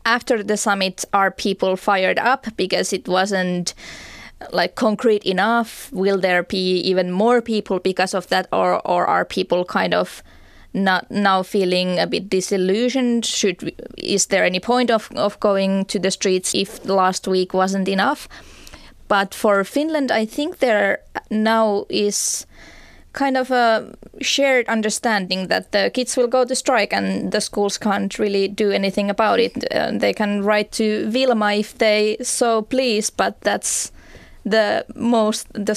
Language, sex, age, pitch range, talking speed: Finnish, female, 20-39, 195-230 Hz, 160 wpm